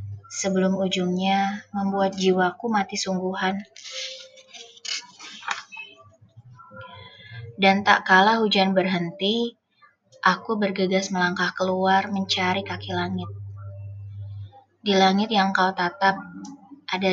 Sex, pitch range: female, 170-205 Hz